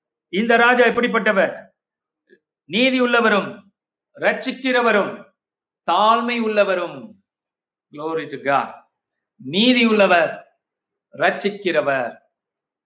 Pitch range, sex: 175-225 Hz, male